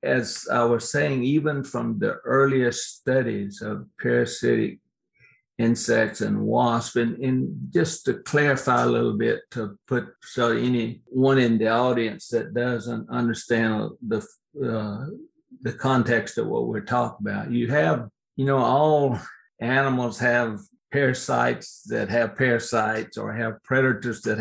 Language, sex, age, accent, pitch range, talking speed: English, male, 60-79, American, 110-130 Hz, 135 wpm